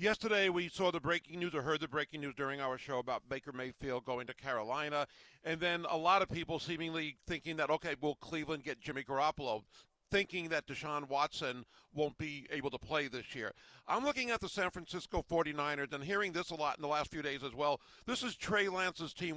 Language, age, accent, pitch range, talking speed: English, 50-69, American, 150-185 Hz, 215 wpm